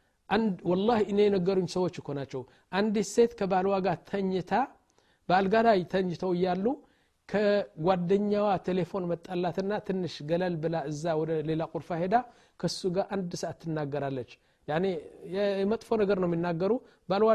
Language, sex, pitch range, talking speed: Amharic, male, 155-195 Hz, 120 wpm